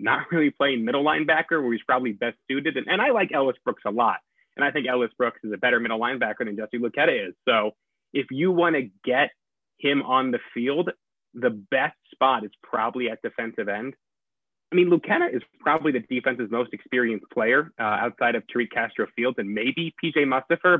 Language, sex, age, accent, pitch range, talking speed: English, male, 20-39, American, 115-165 Hz, 200 wpm